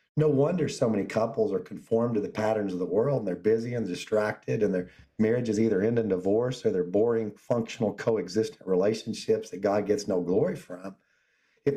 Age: 40-59